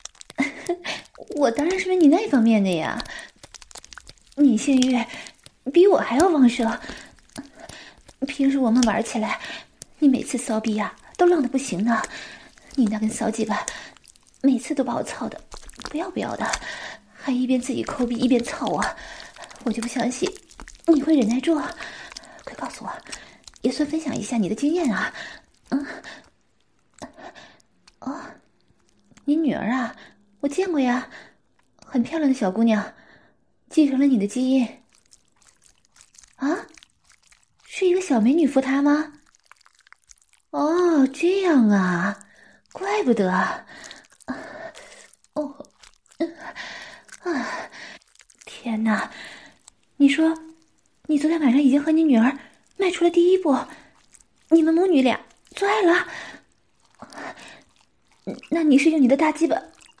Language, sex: English, female